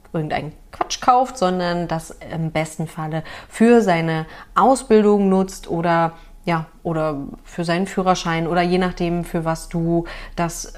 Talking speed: 140 wpm